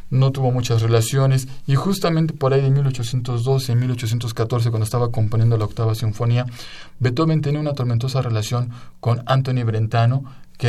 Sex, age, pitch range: male, 40-59, 110-135 Hz